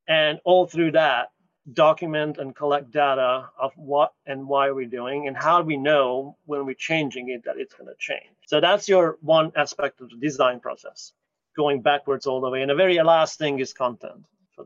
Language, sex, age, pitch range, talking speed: English, male, 30-49, 140-170 Hz, 200 wpm